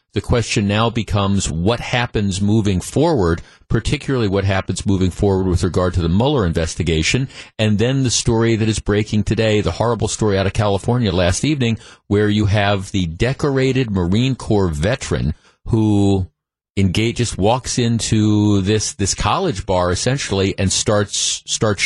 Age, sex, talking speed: 50-69, male, 155 wpm